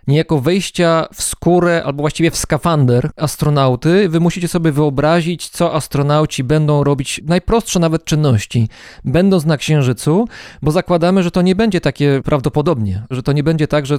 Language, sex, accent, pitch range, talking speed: Polish, male, native, 135-165 Hz, 160 wpm